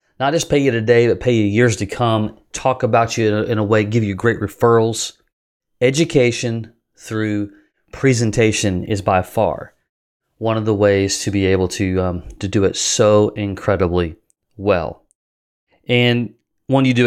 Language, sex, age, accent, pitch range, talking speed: English, male, 30-49, American, 100-120 Hz, 160 wpm